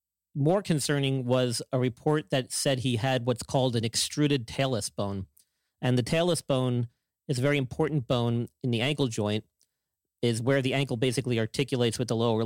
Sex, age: male, 40-59